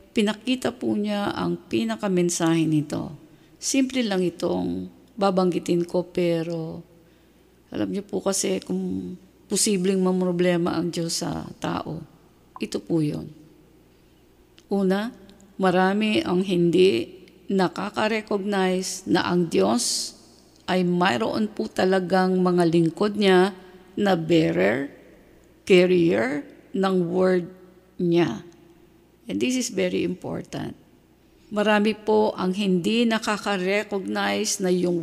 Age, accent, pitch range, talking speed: 50-69, Filipino, 170-210 Hz, 100 wpm